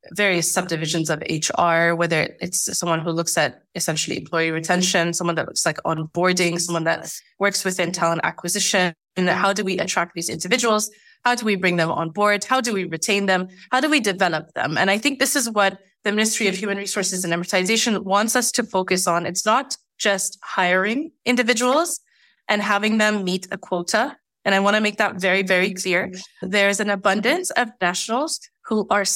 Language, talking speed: English, 190 wpm